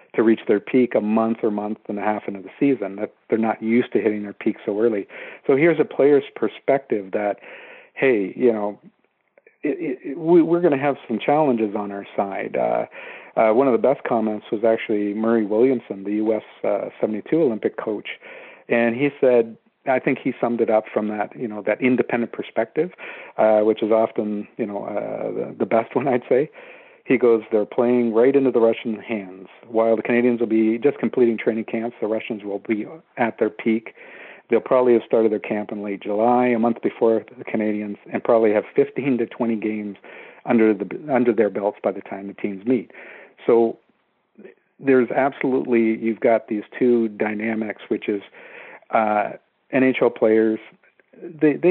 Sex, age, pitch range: male, 50-69, 110-130 Hz